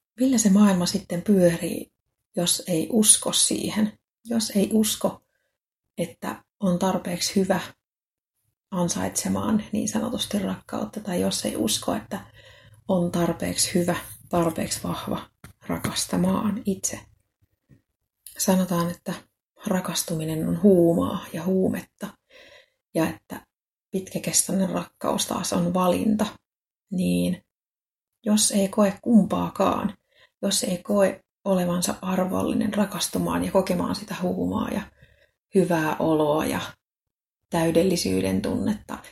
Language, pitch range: Finnish, 170-205 Hz